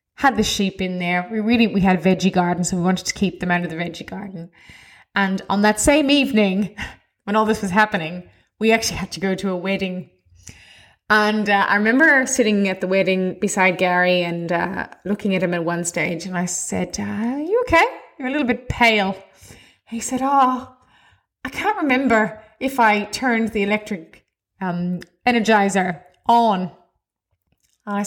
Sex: female